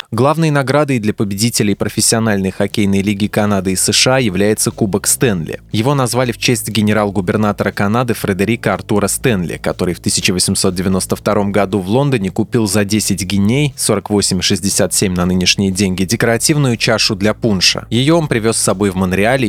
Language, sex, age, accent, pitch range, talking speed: Russian, male, 20-39, native, 100-120 Hz, 150 wpm